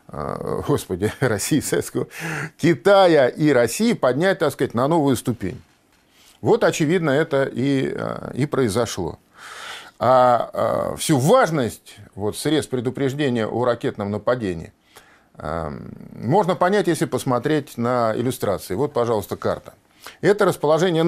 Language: Russian